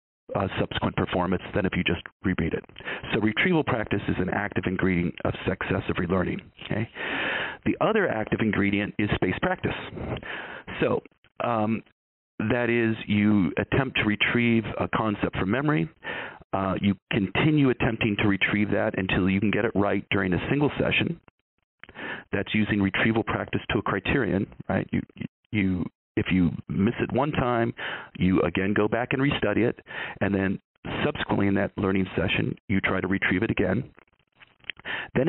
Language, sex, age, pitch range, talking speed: English, male, 40-59, 95-115 Hz, 160 wpm